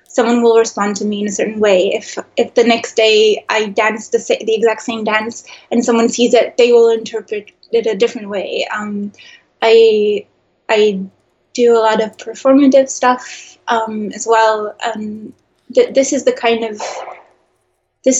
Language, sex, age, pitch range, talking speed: English, female, 20-39, 210-245 Hz, 170 wpm